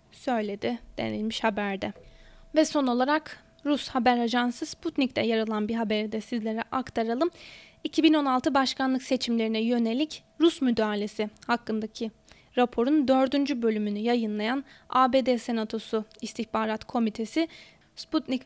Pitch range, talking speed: 225-280 Hz, 105 wpm